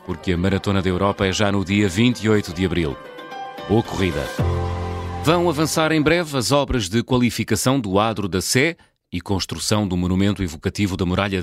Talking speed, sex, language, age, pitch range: 175 wpm, male, English, 30-49, 90-130 Hz